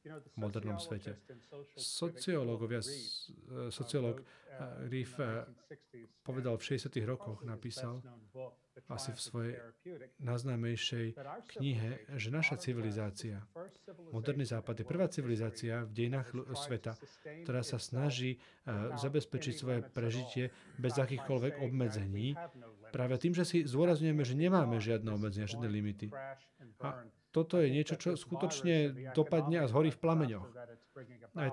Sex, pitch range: male, 120-150 Hz